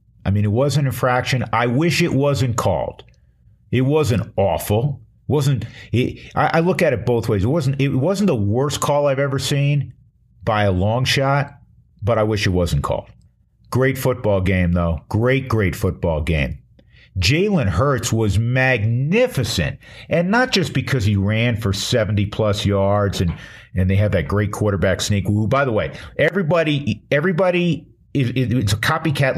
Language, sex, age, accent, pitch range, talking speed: English, male, 50-69, American, 100-130 Hz, 170 wpm